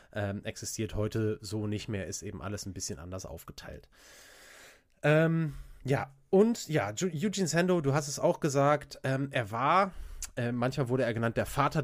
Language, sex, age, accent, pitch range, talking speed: German, male, 20-39, German, 110-145 Hz, 175 wpm